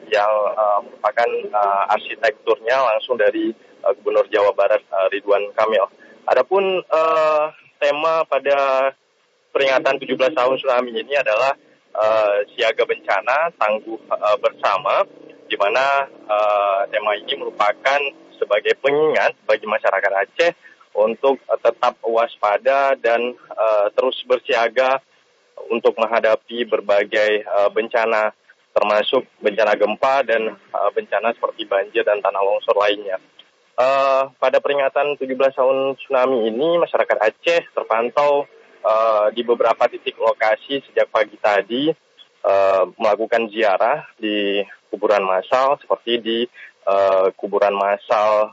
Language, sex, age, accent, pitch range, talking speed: Indonesian, male, 20-39, native, 105-160 Hz, 110 wpm